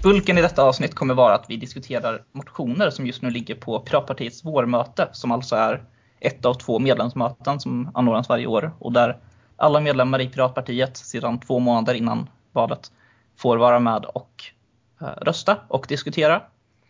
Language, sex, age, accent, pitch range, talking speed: English, male, 20-39, Swedish, 120-135 Hz, 165 wpm